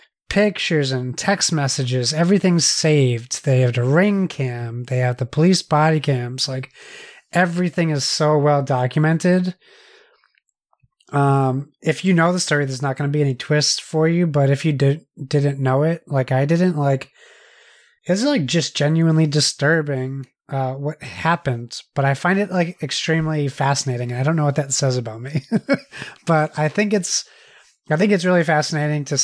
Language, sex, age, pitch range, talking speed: English, male, 30-49, 130-160 Hz, 165 wpm